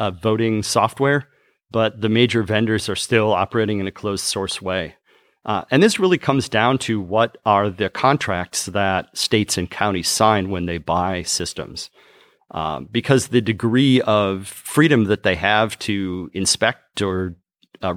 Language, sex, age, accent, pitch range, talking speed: English, male, 40-59, American, 90-110 Hz, 160 wpm